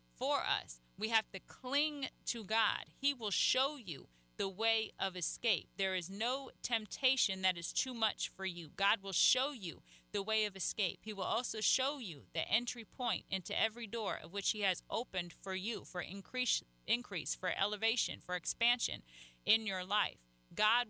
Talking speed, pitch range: 180 wpm, 185-225 Hz